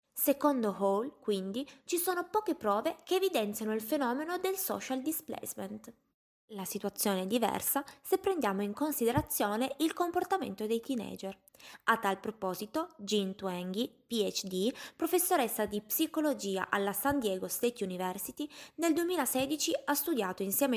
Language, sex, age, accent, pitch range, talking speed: Italian, female, 20-39, native, 200-290 Hz, 130 wpm